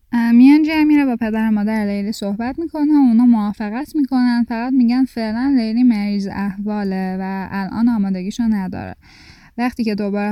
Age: 10-29